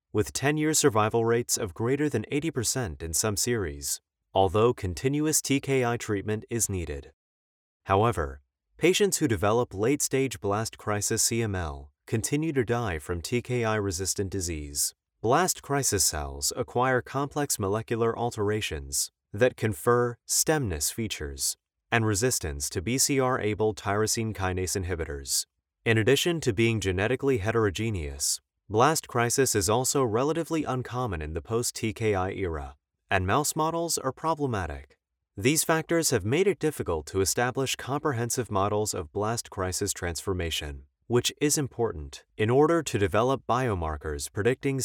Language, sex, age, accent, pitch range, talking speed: English, male, 30-49, American, 95-130 Hz, 125 wpm